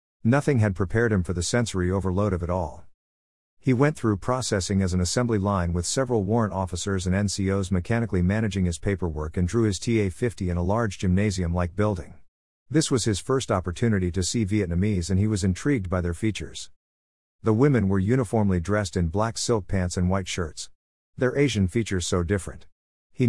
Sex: male